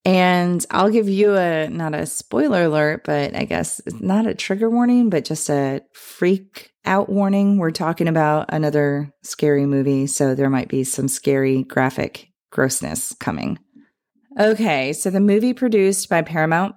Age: 30-49